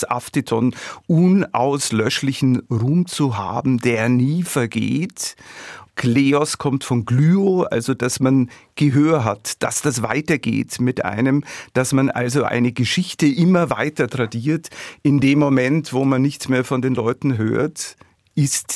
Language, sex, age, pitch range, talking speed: German, male, 50-69, 120-145 Hz, 135 wpm